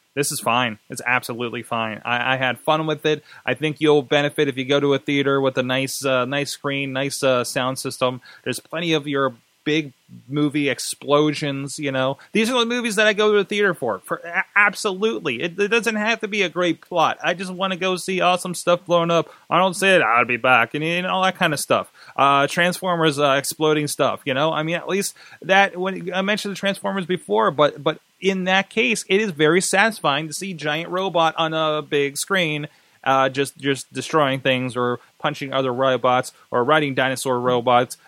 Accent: American